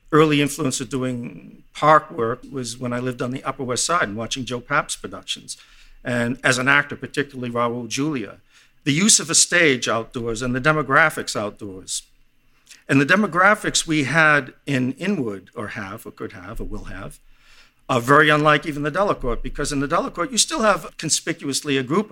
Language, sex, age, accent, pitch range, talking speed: English, male, 50-69, American, 125-155 Hz, 185 wpm